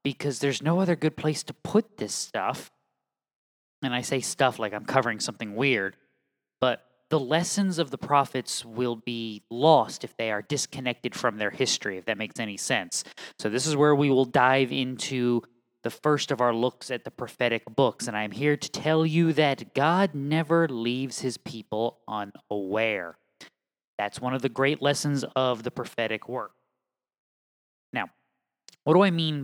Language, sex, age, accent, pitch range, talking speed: English, male, 20-39, American, 120-155 Hz, 175 wpm